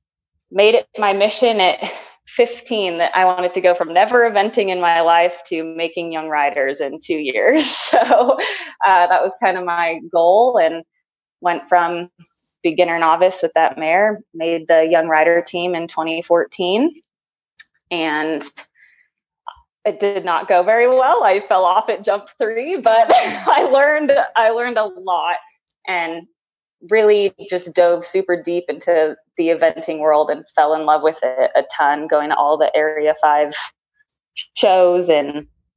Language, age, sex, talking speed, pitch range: English, 20-39, female, 155 wpm, 165-200 Hz